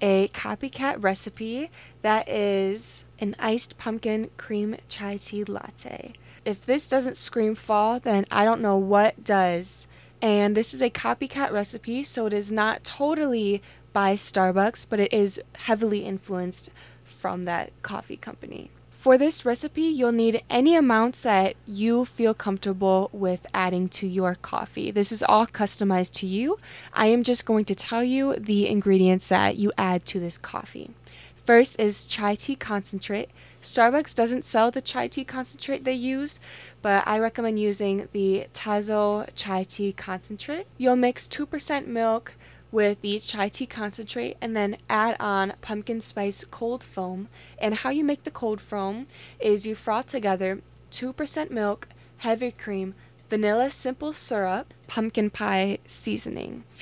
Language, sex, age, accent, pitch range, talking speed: English, female, 20-39, American, 200-240 Hz, 150 wpm